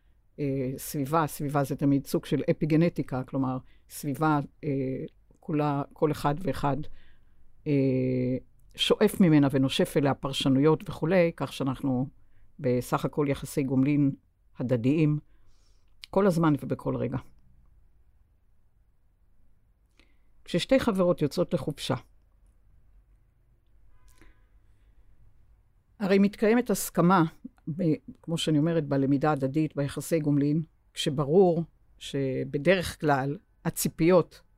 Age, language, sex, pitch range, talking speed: 60-79, Hebrew, female, 125-165 Hz, 90 wpm